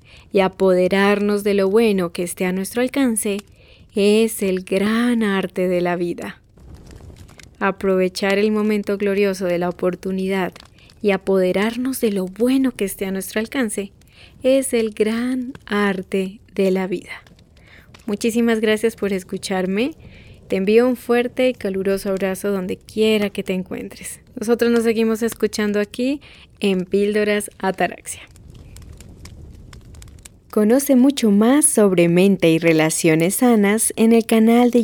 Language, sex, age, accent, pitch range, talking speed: Spanish, female, 20-39, Colombian, 185-230 Hz, 135 wpm